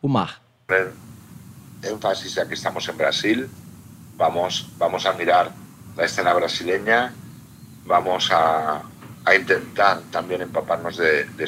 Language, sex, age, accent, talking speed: Portuguese, male, 60-79, Spanish, 115 wpm